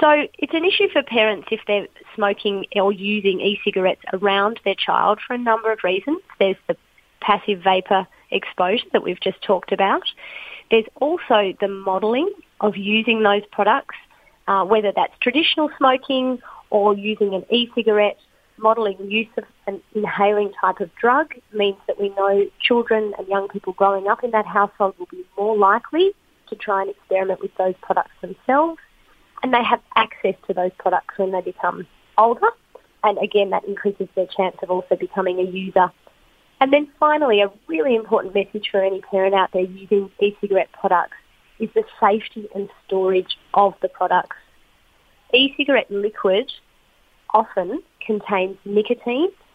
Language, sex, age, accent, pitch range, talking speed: English, female, 30-49, Australian, 195-235 Hz, 155 wpm